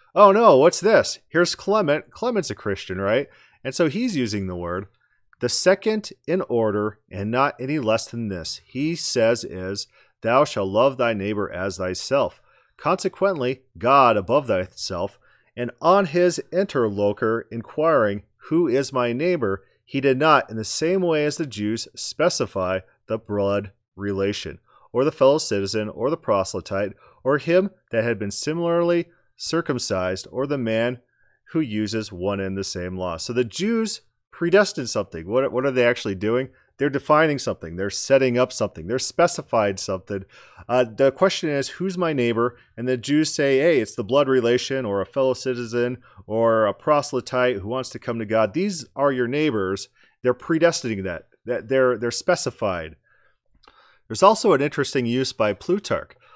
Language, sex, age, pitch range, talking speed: English, male, 30-49, 105-150 Hz, 165 wpm